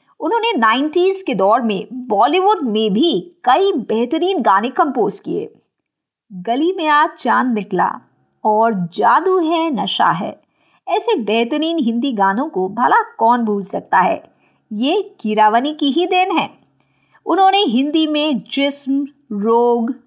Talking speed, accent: 130 wpm, native